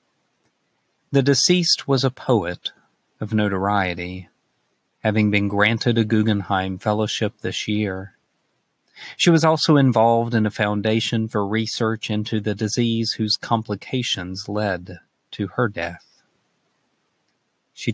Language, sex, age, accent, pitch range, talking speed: English, male, 40-59, American, 100-115 Hz, 115 wpm